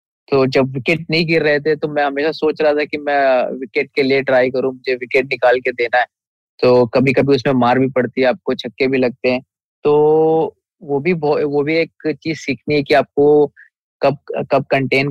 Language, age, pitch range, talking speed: Hindi, 20-39, 130-150 Hz, 150 wpm